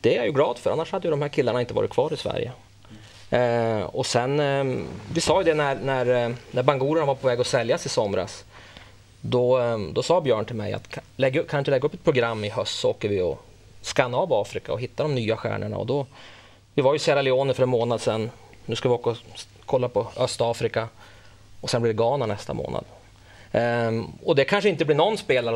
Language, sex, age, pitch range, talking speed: Swedish, male, 30-49, 115-145 Hz, 235 wpm